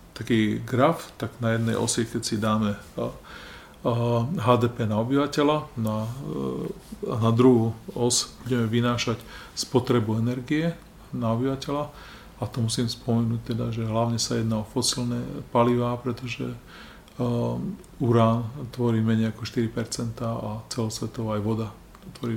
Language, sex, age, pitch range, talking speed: Slovak, male, 40-59, 115-125 Hz, 125 wpm